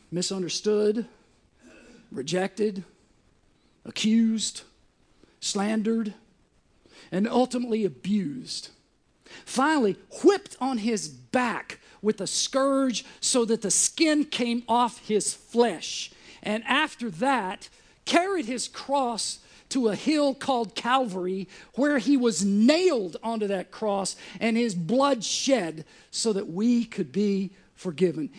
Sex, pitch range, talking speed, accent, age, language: male, 190-250 Hz, 110 wpm, American, 50-69, English